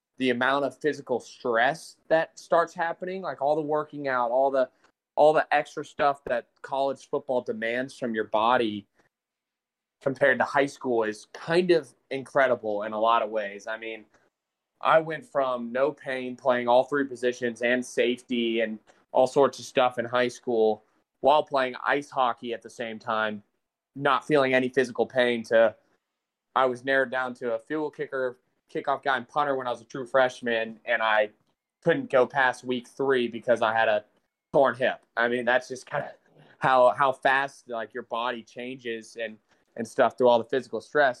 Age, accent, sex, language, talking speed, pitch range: 20-39, American, male, English, 185 wpm, 115-140 Hz